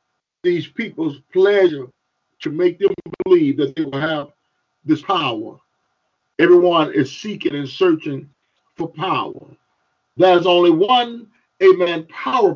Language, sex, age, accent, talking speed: English, male, 50-69, American, 120 wpm